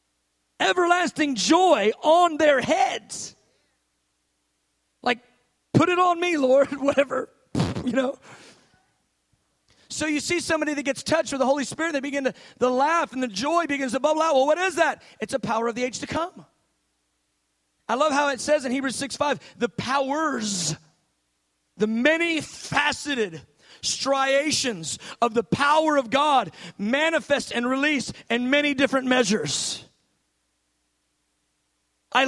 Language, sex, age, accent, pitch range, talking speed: English, male, 40-59, American, 230-325 Hz, 145 wpm